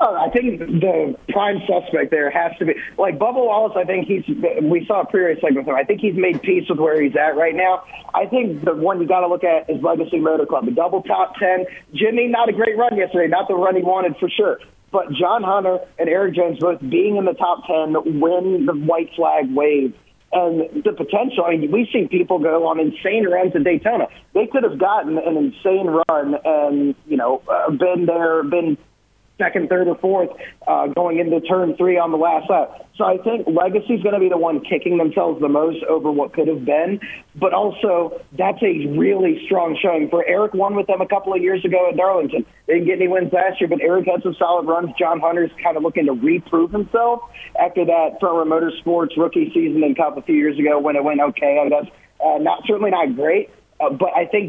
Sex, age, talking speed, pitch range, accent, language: male, 40-59, 225 wpm, 165-195 Hz, American, English